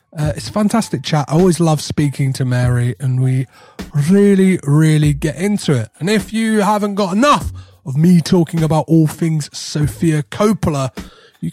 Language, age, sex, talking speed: English, 30-49, male, 170 wpm